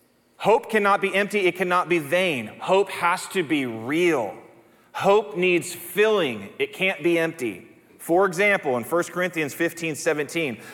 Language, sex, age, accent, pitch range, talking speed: English, male, 30-49, American, 145-190 Hz, 150 wpm